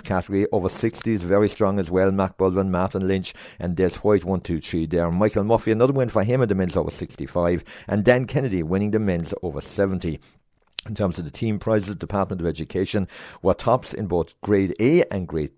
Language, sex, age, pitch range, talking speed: English, male, 60-79, 85-105 Hz, 215 wpm